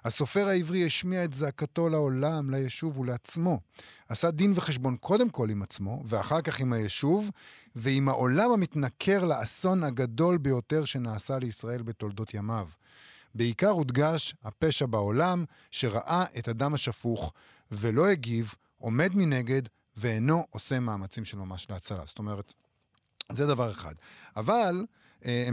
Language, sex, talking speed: Hebrew, male, 125 wpm